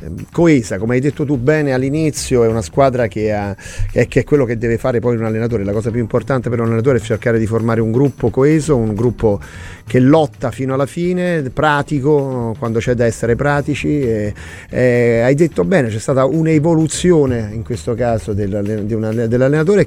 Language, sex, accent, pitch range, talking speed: Italian, male, native, 110-140 Hz, 170 wpm